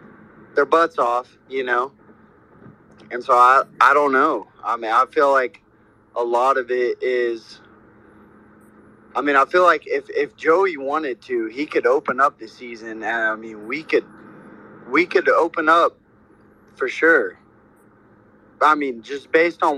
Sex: male